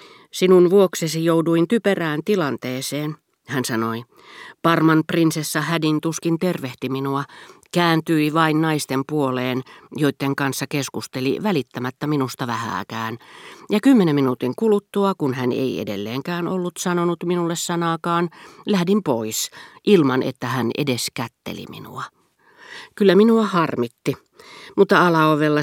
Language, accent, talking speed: Finnish, native, 110 wpm